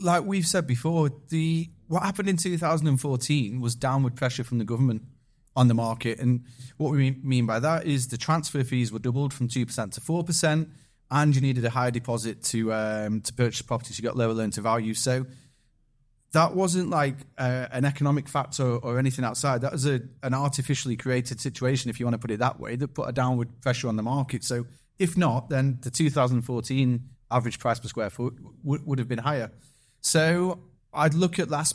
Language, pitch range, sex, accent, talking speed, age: English, 120-140 Hz, male, British, 210 wpm, 30-49